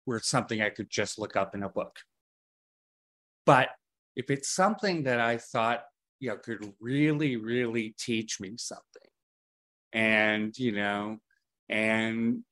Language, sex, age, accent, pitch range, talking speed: English, male, 30-49, American, 115-165 Hz, 140 wpm